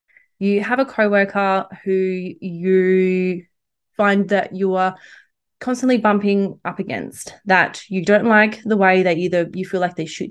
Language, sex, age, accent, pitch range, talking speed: English, female, 20-39, Australian, 185-220 Hz, 155 wpm